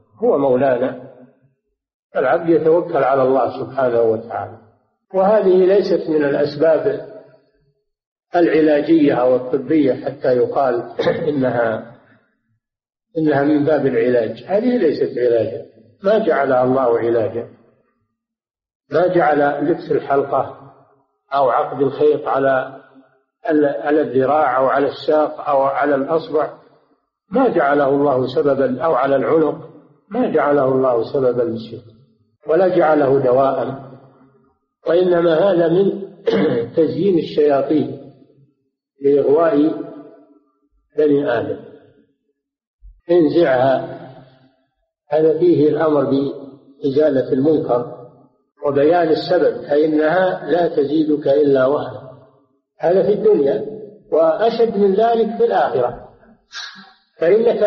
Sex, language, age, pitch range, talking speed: male, Arabic, 50-69, 130-170 Hz, 95 wpm